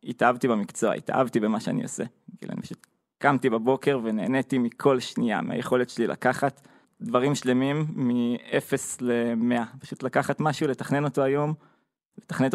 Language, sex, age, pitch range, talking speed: Hebrew, male, 20-39, 120-140 Hz, 120 wpm